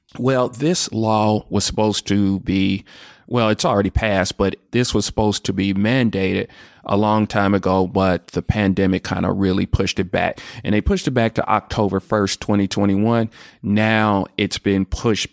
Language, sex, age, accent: English, male, 40-59, American